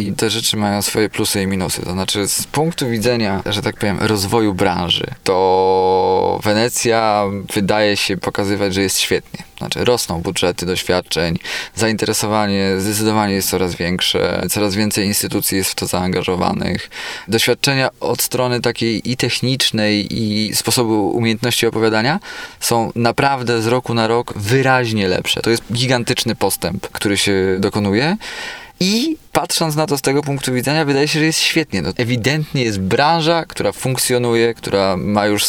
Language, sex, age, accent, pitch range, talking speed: Polish, male, 20-39, native, 105-125 Hz, 150 wpm